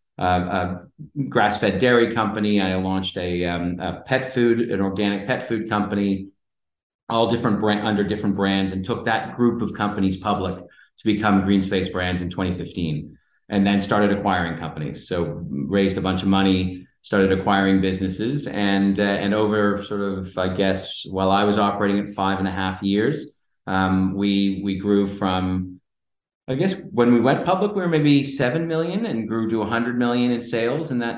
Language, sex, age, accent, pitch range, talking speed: English, male, 40-59, American, 95-115 Hz, 180 wpm